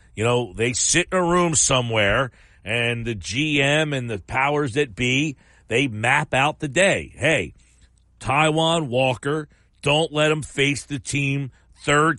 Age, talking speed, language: 50-69, 155 wpm, English